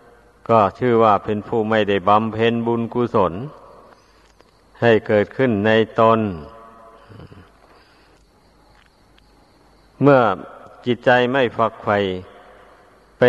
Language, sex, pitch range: Thai, male, 105-120 Hz